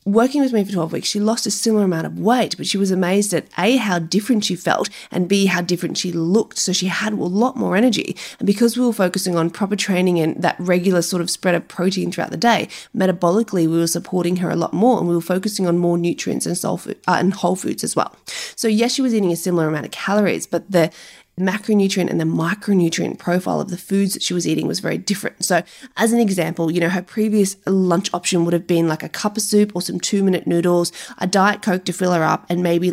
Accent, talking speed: Australian, 240 wpm